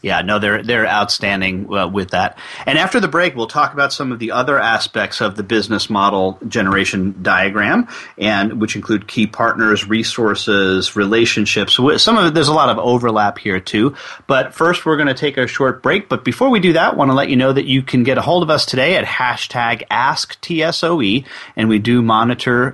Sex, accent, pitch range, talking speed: male, American, 105-140 Hz, 210 wpm